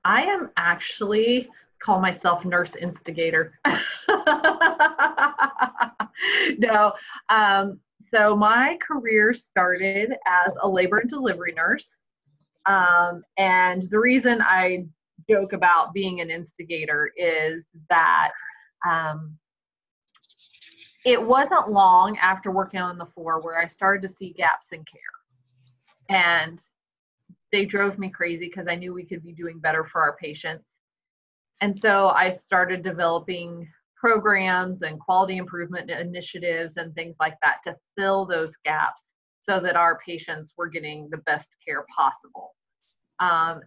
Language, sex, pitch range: English, female, 170-235 Hz